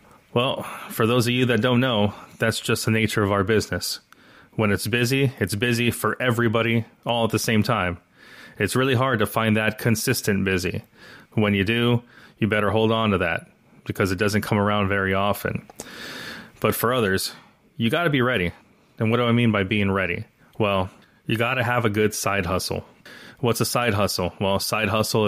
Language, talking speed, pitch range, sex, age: English, 200 wpm, 95-115 Hz, male, 30-49